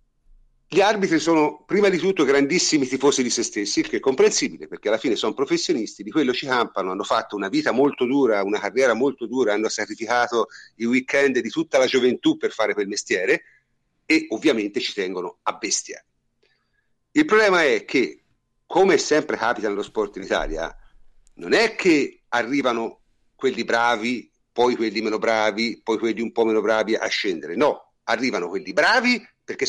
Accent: native